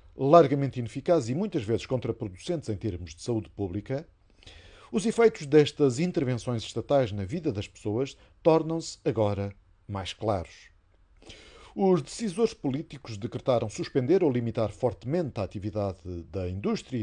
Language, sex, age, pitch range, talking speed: Portuguese, male, 50-69, 105-160 Hz, 125 wpm